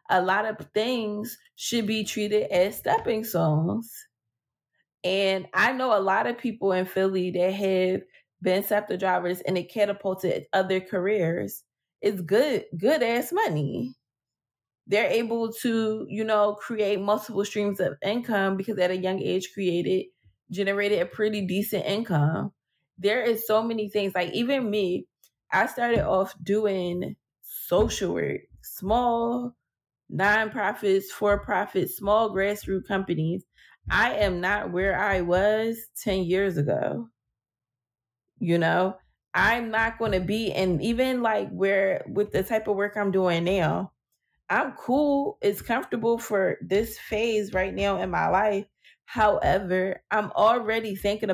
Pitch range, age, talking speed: 185-220 Hz, 20-39, 140 wpm